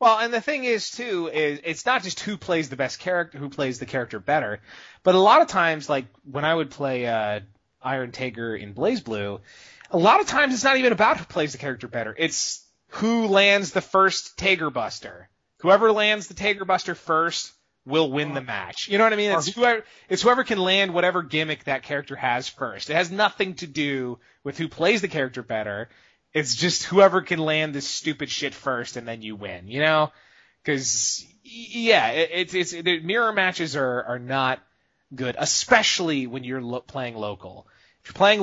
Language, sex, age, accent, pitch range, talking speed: English, male, 30-49, American, 130-190 Hz, 205 wpm